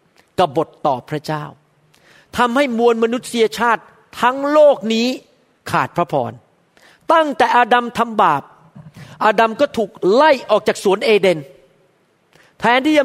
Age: 40-59